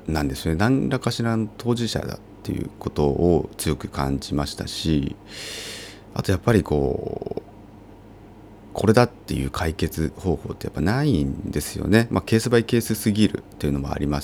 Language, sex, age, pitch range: Japanese, male, 30-49, 80-105 Hz